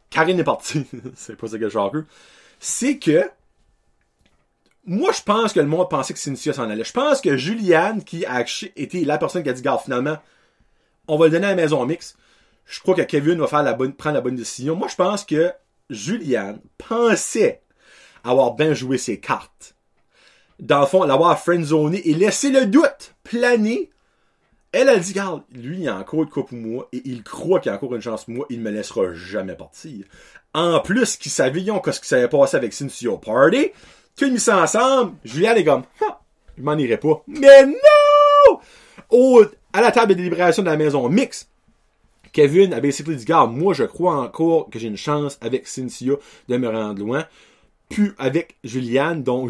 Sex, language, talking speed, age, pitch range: male, French, 200 wpm, 30-49, 135-210 Hz